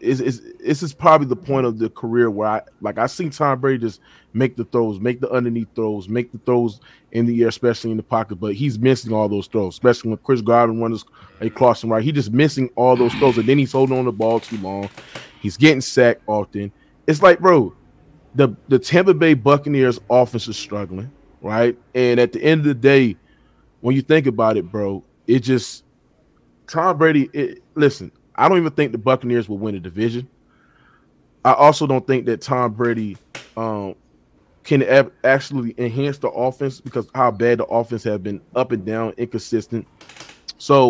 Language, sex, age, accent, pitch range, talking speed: English, male, 20-39, American, 110-135 Hz, 195 wpm